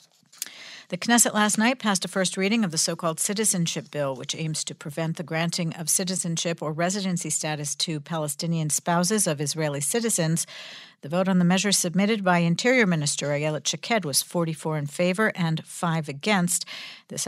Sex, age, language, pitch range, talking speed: female, 50-69, English, 155-195 Hz, 170 wpm